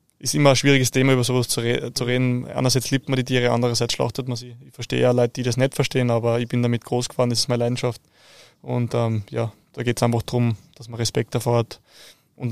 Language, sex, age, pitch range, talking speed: German, male, 20-39, 120-130 Hz, 245 wpm